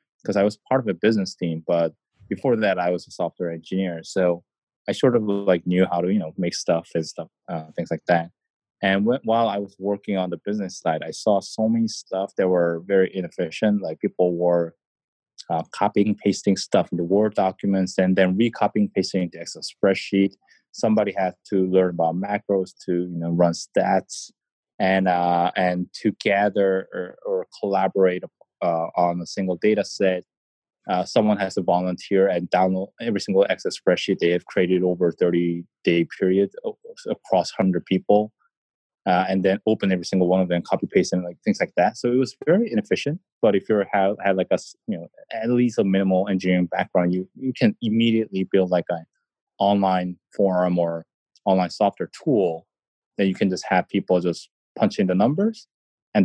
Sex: male